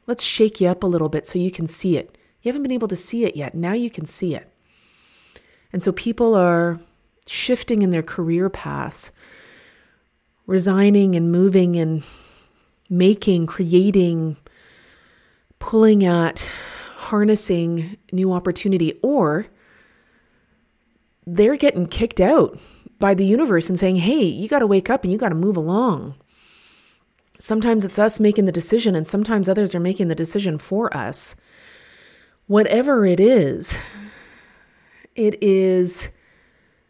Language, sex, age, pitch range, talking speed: English, female, 30-49, 170-215 Hz, 140 wpm